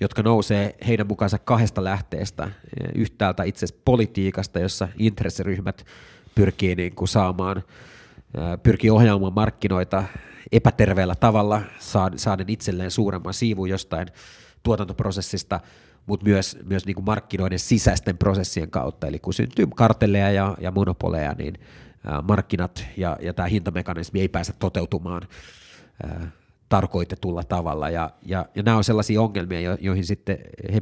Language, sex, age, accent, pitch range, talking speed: Finnish, male, 30-49, native, 90-105 Hz, 120 wpm